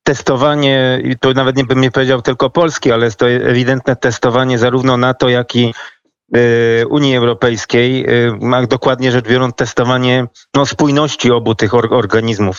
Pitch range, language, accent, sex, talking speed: 115-130 Hz, Polish, native, male, 160 wpm